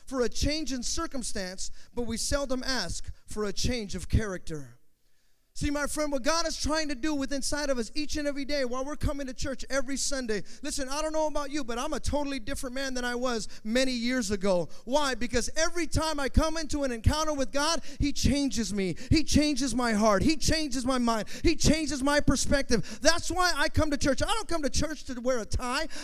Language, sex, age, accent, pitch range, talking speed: English, male, 30-49, American, 245-325 Hz, 225 wpm